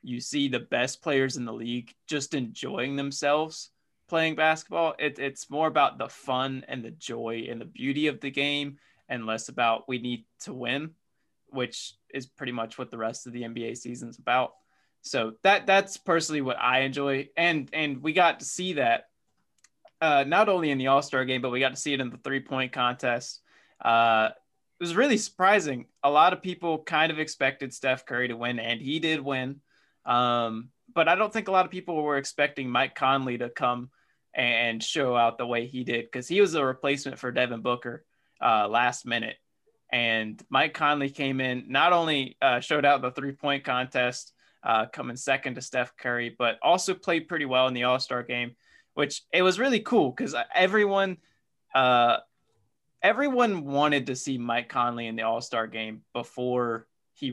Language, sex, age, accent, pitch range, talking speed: English, male, 20-39, American, 120-155 Hz, 190 wpm